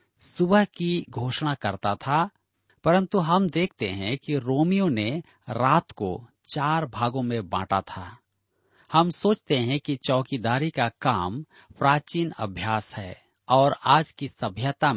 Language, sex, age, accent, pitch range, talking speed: Hindi, male, 40-59, native, 110-155 Hz, 130 wpm